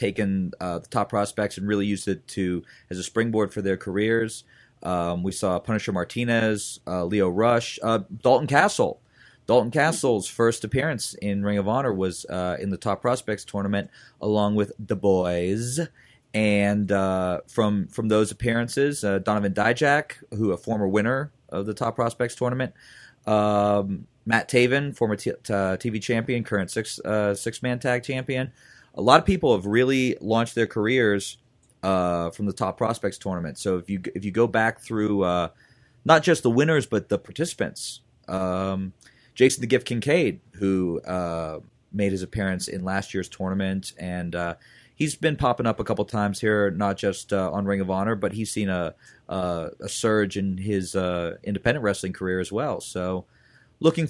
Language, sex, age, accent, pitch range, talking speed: English, male, 30-49, American, 95-120 Hz, 175 wpm